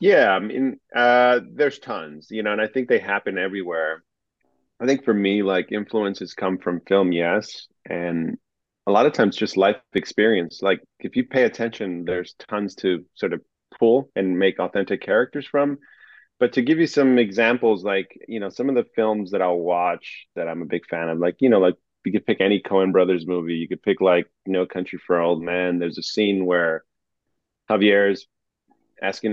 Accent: American